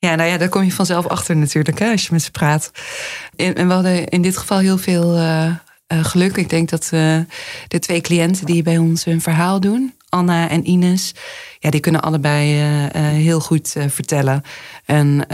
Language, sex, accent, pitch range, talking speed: Dutch, female, Dutch, 150-170 Hz, 195 wpm